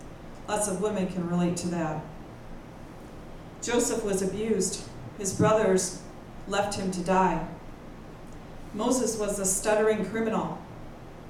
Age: 40-59